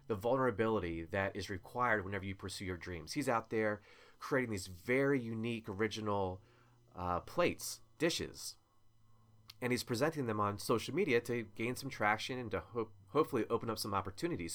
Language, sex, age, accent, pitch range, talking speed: English, male, 30-49, American, 90-115 Hz, 160 wpm